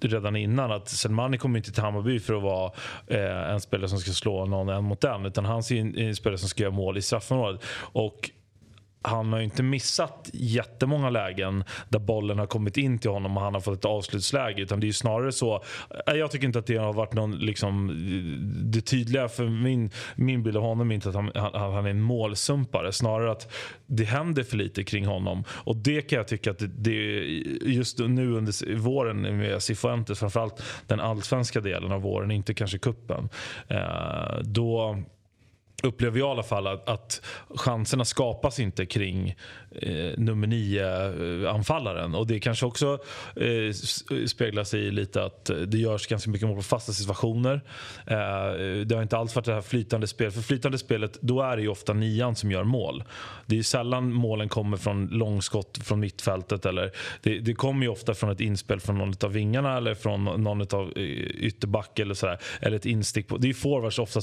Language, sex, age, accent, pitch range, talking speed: Swedish, male, 30-49, native, 100-120 Hz, 195 wpm